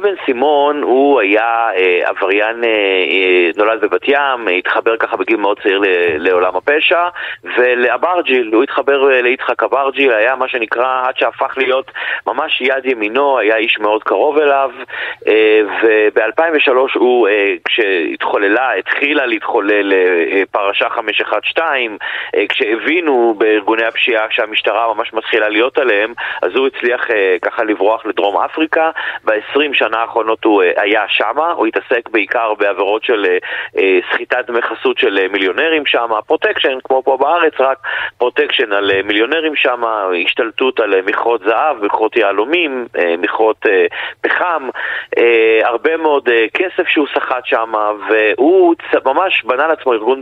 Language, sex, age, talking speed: Hebrew, male, 30-49, 120 wpm